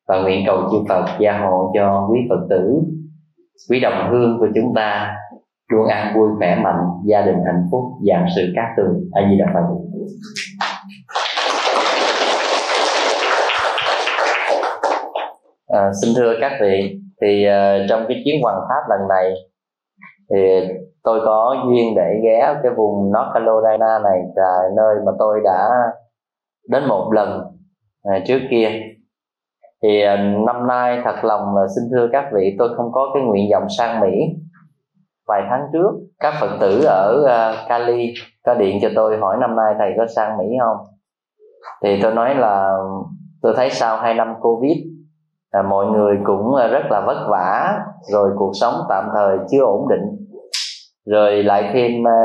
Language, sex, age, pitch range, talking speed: Vietnamese, male, 20-39, 100-125 Hz, 155 wpm